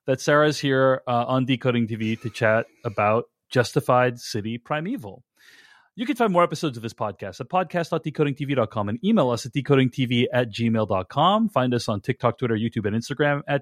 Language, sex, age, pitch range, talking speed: English, male, 30-49, 120-160 Hz, 175 wpm